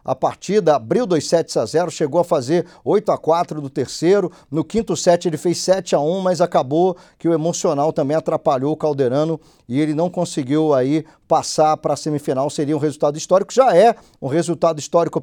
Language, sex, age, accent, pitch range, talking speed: Portuguese, male, 50-69, Brazilian, 155-190 Hz, 175 wpm